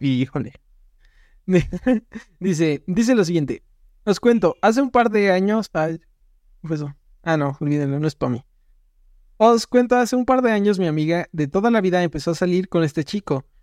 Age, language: 20-39, Spanish